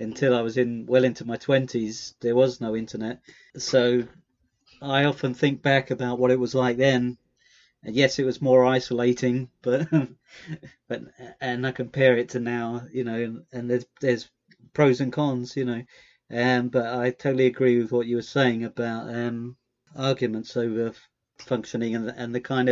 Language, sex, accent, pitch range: English, male, British, 120-130 Hz